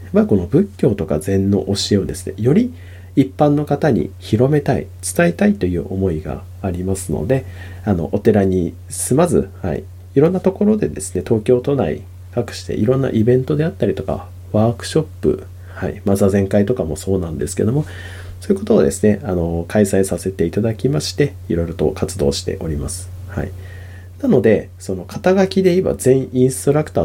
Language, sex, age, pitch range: Japanese, male, 40-59, 90-125 Hz